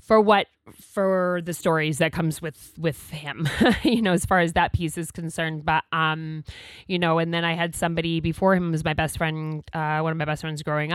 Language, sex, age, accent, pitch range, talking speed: English, female, 20-39, American, 155-200 Hz, 225 wpm